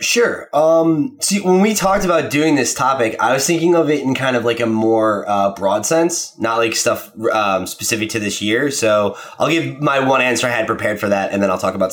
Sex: male